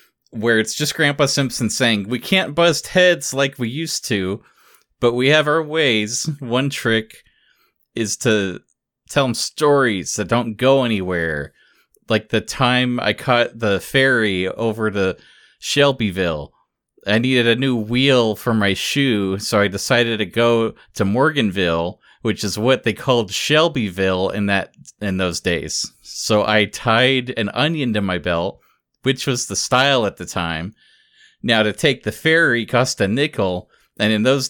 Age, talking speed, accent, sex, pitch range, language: 30-49, 160 wpm, American, male, 100-130 Hz, English